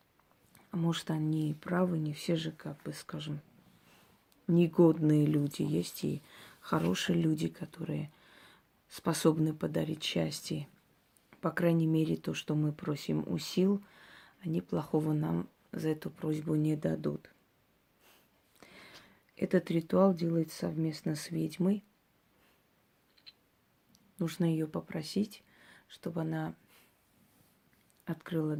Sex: female